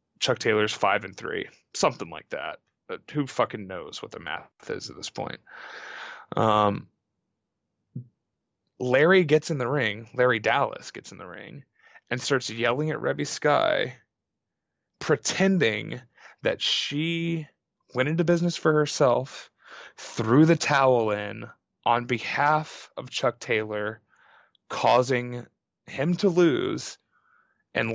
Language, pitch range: English, 115-155 Hz